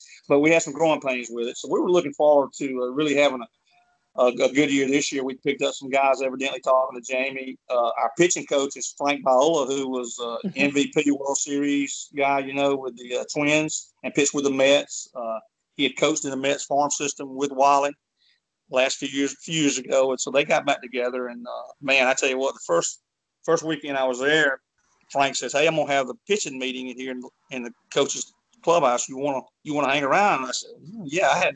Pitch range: 130-145 Hz